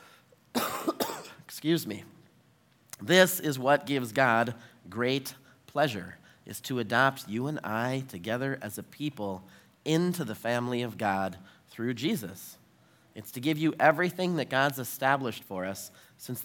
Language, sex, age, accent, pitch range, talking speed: English, male, 30-49, American, 120-155 Hz, 135 wpm